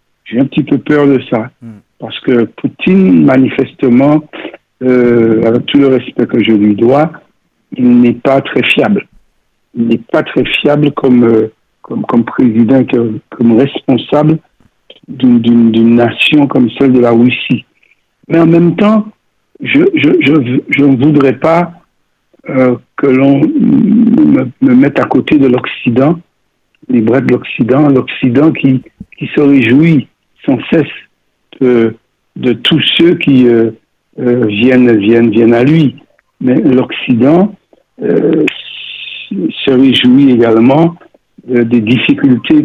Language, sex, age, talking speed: French, male, 60-79, 135 wpm